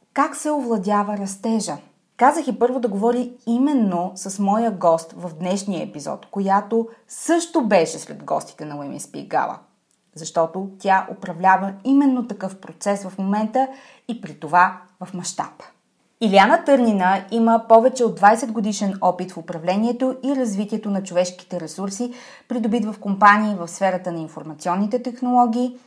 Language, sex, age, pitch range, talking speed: Bulgarian, female, 30-49, 185-235 Hz, 140 wpm